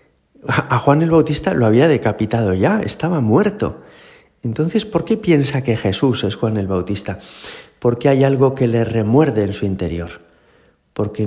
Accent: Spanish